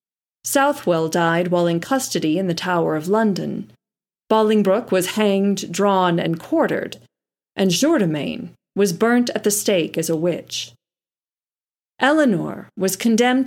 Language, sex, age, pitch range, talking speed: English, female, 30-49, 180-245 Hz, 130 wpm